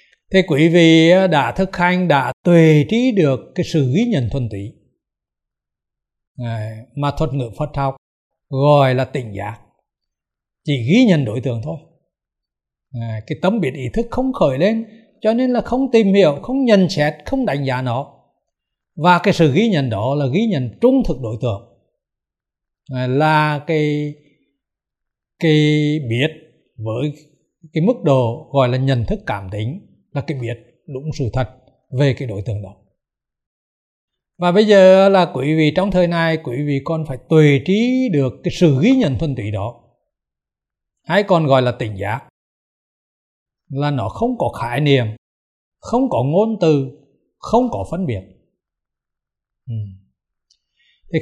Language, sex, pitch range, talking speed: Vietnamese, male, 120-180 Hz, 160 wpm